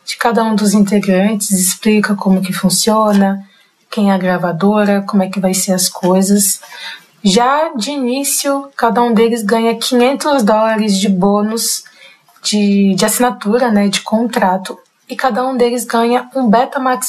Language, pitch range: Portuguese, 195-235 Hz